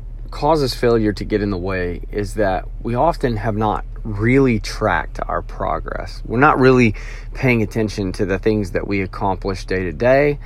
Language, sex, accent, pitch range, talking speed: English, male, American, 100-120 Hz, 180 wpm